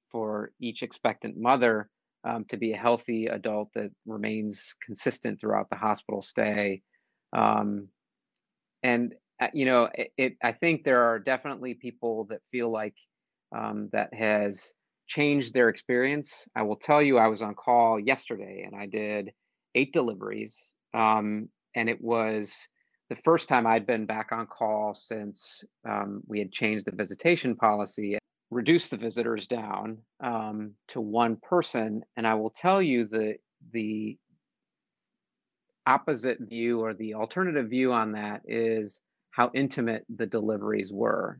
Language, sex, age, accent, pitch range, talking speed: English, male, 40-59, American, 105-120 Hz, 150 wpm